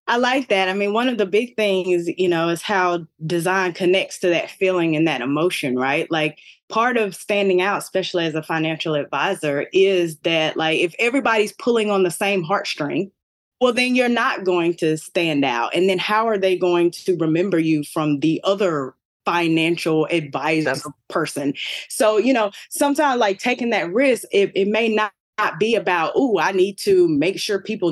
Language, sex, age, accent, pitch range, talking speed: English, female, 20-39, American, 170-225 Hz, 185 wpm